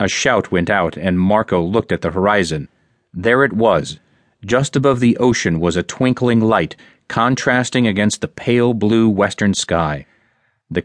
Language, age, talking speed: English, 40-59, 160 wpm